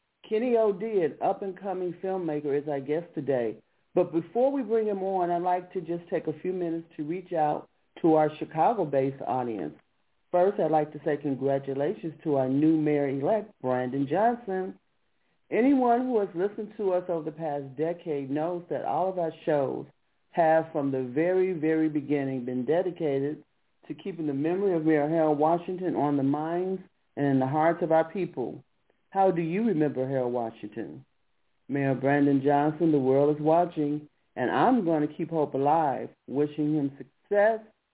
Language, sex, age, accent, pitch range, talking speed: English, male, 40-59, American, 145-185 Hz, 170 wpm